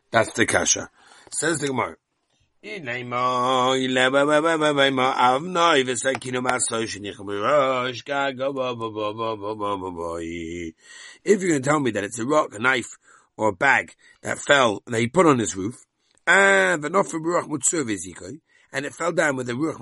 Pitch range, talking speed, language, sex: 110-170 Hz, 105 wpm, English, male